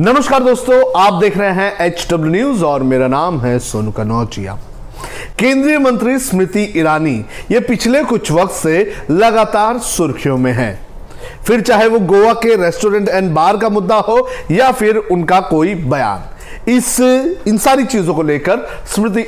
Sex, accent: male, native